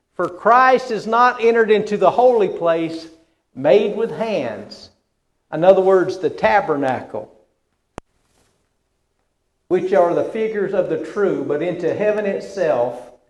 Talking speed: 125 wpm